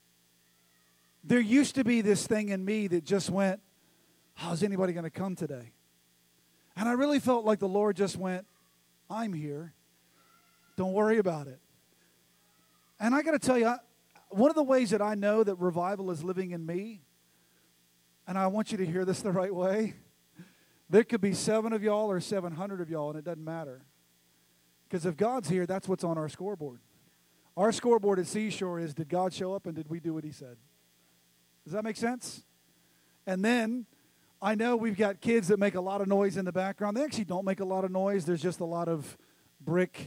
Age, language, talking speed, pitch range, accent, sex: 40-59, English, 205 wpm, 150-210 Hz, American, male